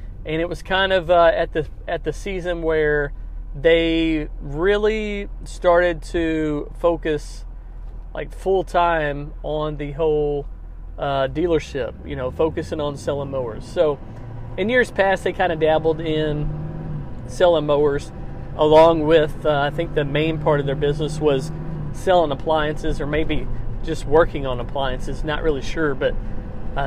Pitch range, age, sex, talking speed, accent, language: 140-175 Hz, 40-59, male, 150 wpm, American, English